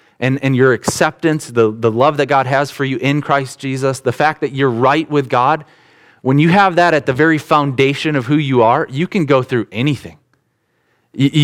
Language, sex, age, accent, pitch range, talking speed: English, male, 30-49, American, 115-145 Hz, 210 wpm